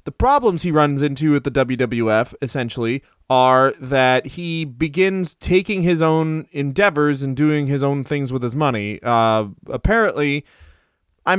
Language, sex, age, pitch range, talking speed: English, male, 20-39, 130-180 Hz, 150 wpm